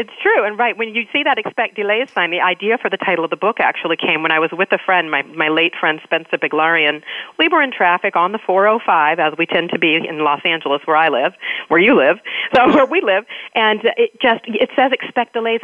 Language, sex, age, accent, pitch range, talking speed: English, female, 40-59, American, 160-220 Hz, 255 wpm